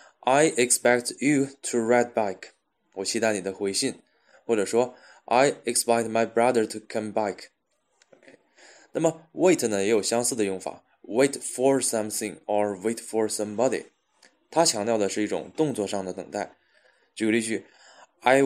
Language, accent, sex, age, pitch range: Chinese, native, male, 20-39, 100-120 Hz